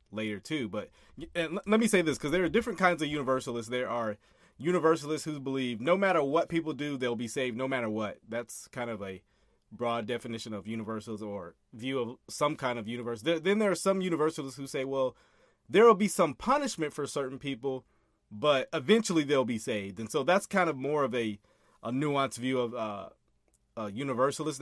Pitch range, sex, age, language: 115-160 Hz, male, 30-49, English